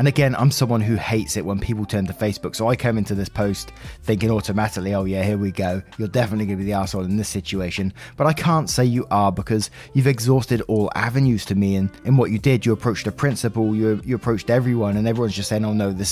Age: 20-39